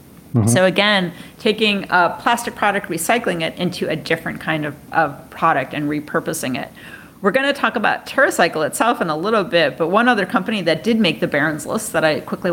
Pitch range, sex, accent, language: 160-205 Hz, female, American, English